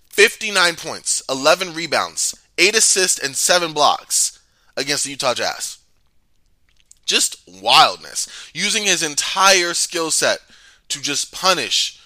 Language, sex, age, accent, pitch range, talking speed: English, male, 20-39, American, 145-205 Hz, 115 wpm